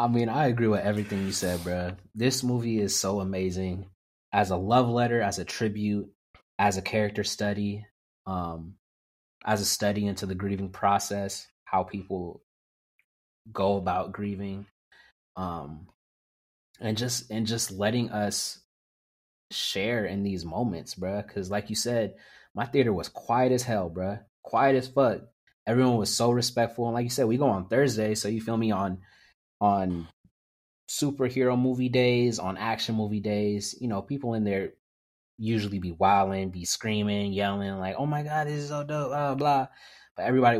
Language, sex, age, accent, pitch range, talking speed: English, male, 20-39, American, 95-115 Hz, 165 wpm